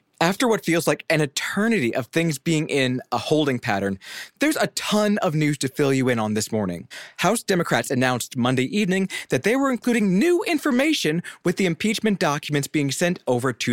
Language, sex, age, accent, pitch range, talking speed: English, male, 20-39, American, 130-200 Hz, 190 wpm